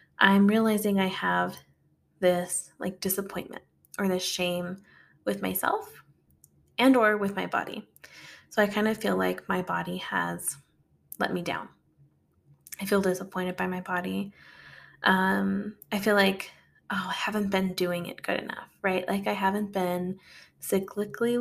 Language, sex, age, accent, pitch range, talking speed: English, female, 20-39, American, 180-210 Hz, 150 wpm